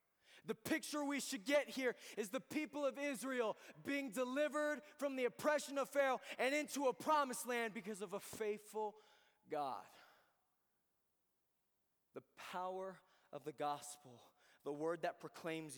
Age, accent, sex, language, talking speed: 20-39, American, male, English, 140 wpm